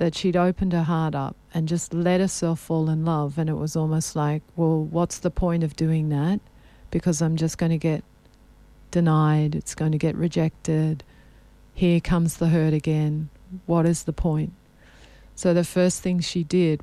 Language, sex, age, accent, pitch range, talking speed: English, female, 40-59, Australian, 155-175 Hz, 185 wpm